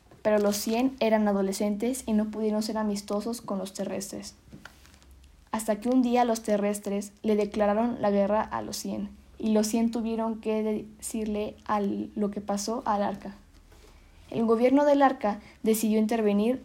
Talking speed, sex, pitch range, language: 160 wpm, female, 205-225 Hz, Spanish